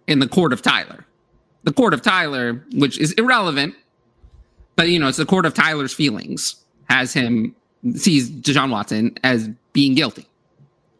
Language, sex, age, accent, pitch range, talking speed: English, male, 30-49, American, 115-145 Hz, 160 wpm